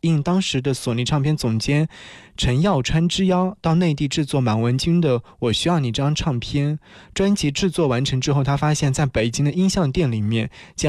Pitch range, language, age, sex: 125-155 Hz, Chinese, 20-39, male